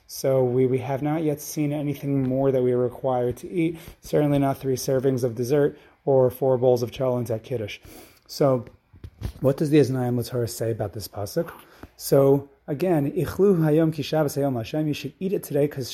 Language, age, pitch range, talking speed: English, 30-49, 125-150 Hz, 190 wpm